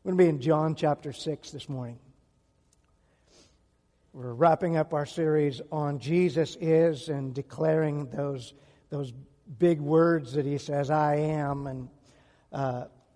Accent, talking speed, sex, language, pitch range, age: American, 140 wpm, male, English, 145-185 Hz, 60-79